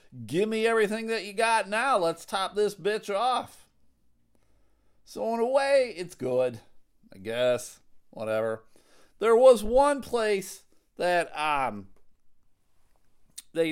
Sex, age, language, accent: male, 40-59, English, American